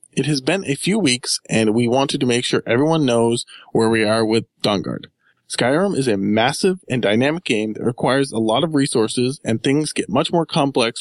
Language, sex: English, male